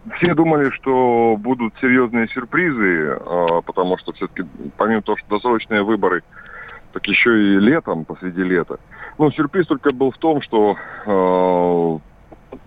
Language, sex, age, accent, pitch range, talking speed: Russian, male, 30-49, native, 95-135 Hz, 135 wpm